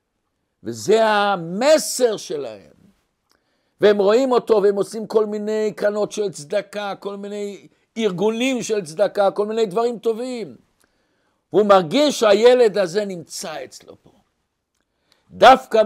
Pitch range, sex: 165-230 Hz, male